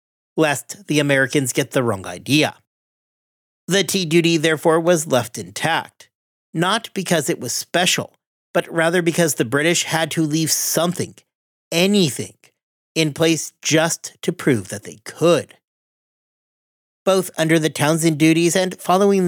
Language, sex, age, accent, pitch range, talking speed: English, male, 40-59, American, 130-170 Hz, 135 wpm